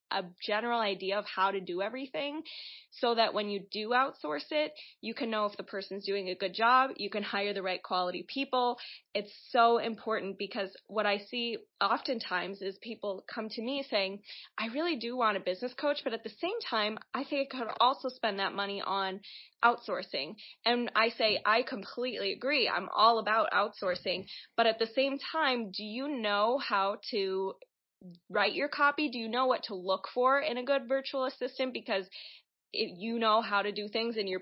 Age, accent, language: 20-39, American, English